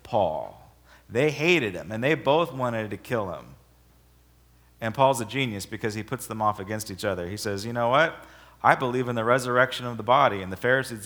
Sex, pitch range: male, 90-115 Hz